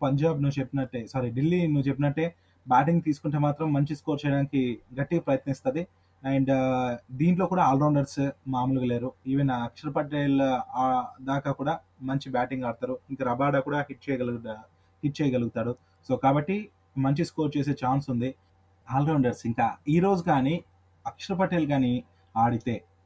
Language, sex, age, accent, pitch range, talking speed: Telugu, male, 20-39, native, 120-145 Hz, 135 wpm